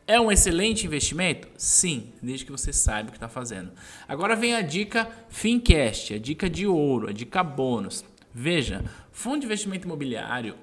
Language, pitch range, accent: Portuguese, 120-175 Hz, Brazilian